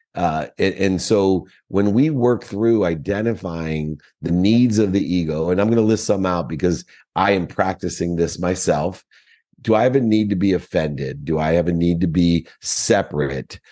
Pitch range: 85-110 Hz